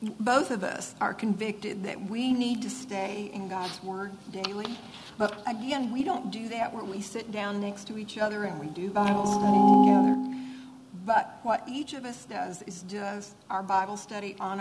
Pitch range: 200-245 Hz